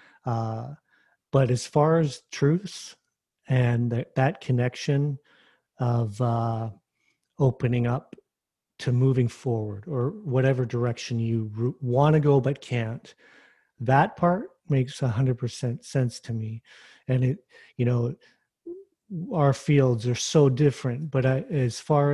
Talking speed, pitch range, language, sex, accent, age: 120 wpm, 120-140 Hz, English, male, American, 40-59